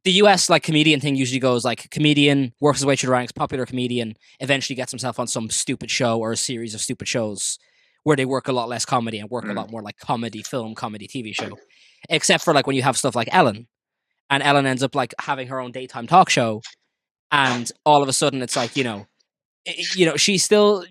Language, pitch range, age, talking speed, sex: English, 120-155 Hz, 20-39, 230 wpm, male